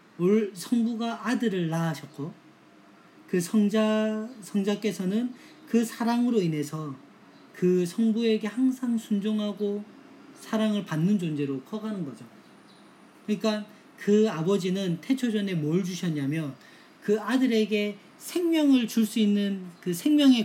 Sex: male